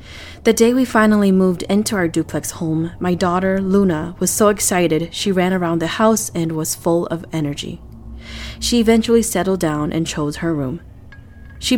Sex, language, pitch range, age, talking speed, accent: female, English, 155-205 Hz, 20-39, 175 wpm, American